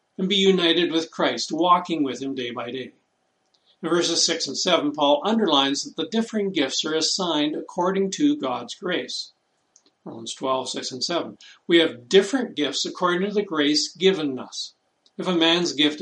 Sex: male